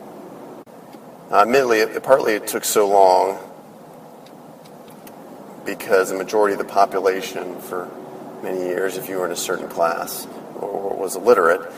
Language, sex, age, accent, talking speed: English, male, 40-59, American, 145 wpm